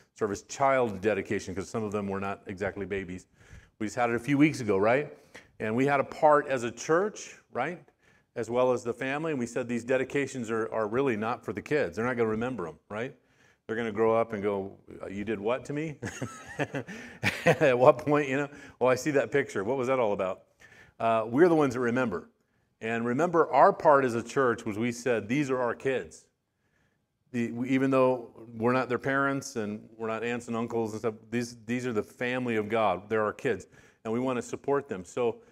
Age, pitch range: 40-59, 110-135 Hz